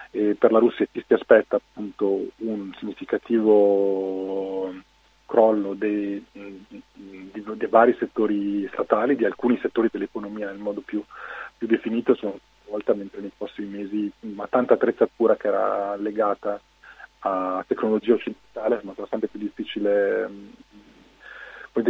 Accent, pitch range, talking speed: native, 100-115 Hz, 120 wpm